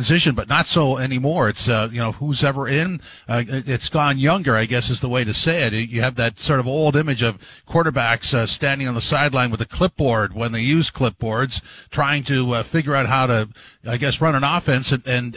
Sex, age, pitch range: male, 50-69, 120-145 Hz